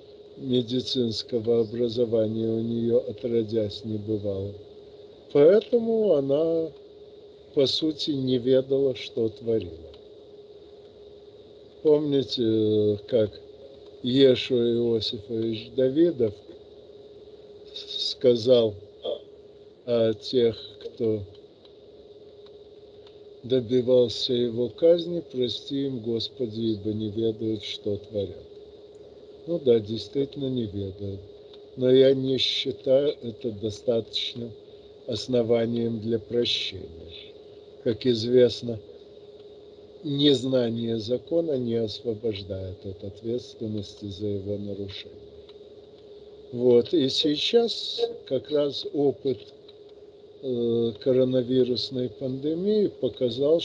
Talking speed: 75 wpm